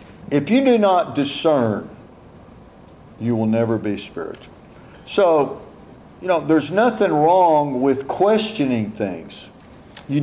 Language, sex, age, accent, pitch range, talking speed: English, male, 50-69, American, 135-185 Hz, 115 wpm